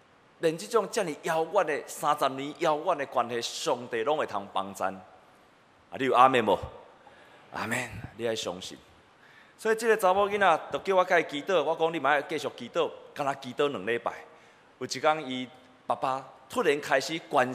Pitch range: 130-190 Hz